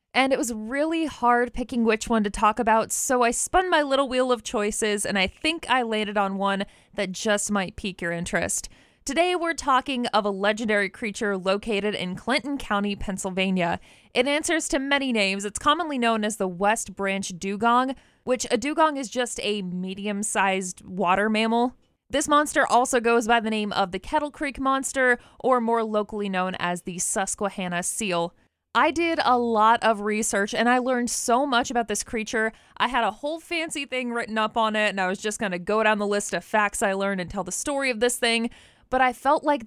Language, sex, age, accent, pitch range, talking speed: English, female, 20-39, American, 200-250 Hz, 205 wpm